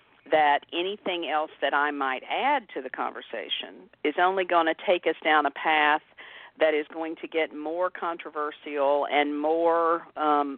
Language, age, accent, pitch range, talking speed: English, 50-69, American, 150-180 Hz, 165 wpm